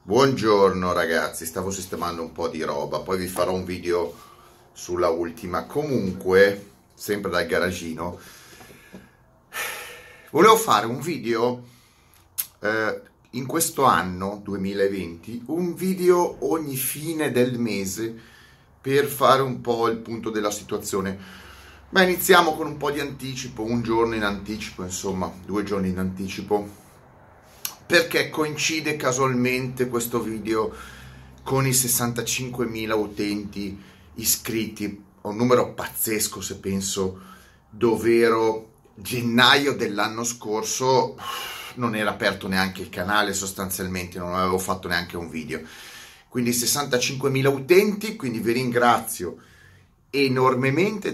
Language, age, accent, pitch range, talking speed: Italian, 30-49, native, 95-130 Hz, 115 wpm